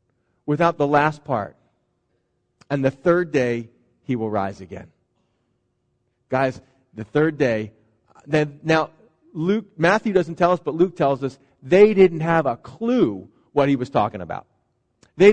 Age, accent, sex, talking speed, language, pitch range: 40-59, American, male, 150 wpm, English, 155-210 Hz